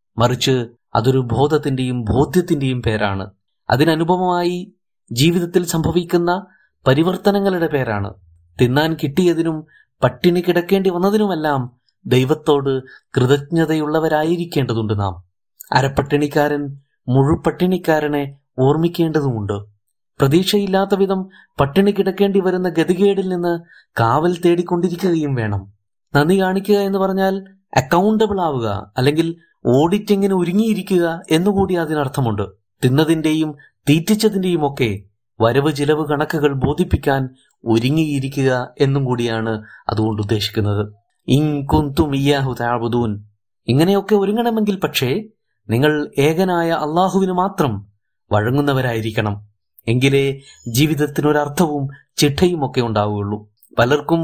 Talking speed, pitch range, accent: 75 wpm, 125-175 Hz, native